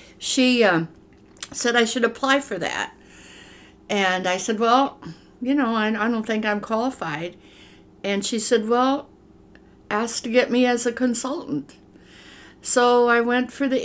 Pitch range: 180-220 Hz